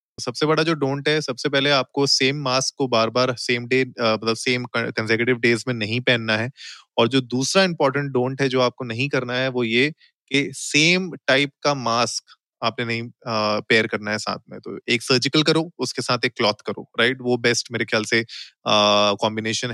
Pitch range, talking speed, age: 115-140 Hz, 195 wpm, 20-39